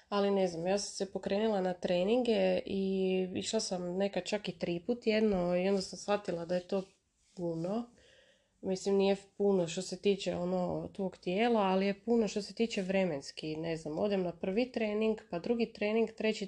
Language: Croatian